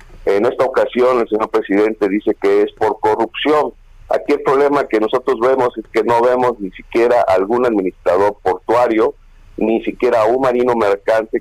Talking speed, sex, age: 165 wpm, male, 50-69